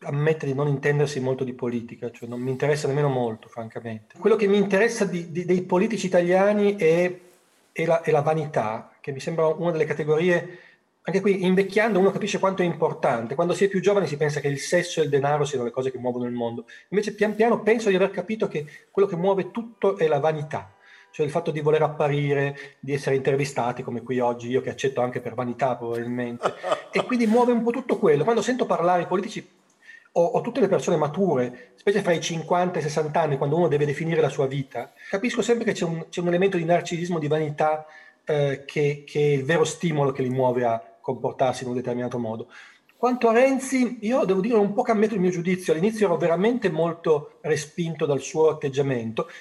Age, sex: 30-49, male